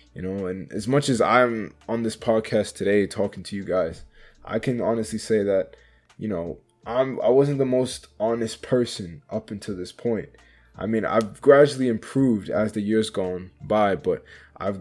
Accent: American